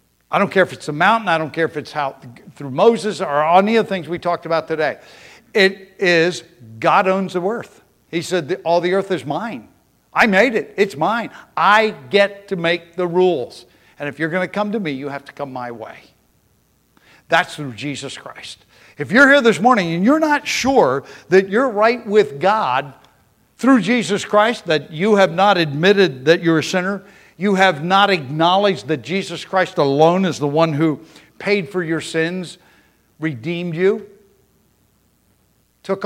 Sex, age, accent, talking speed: male, 60-79, American, 185 wpm